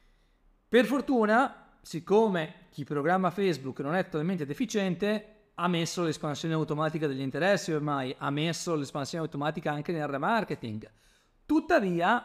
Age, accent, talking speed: 30-49, native, 120 wpm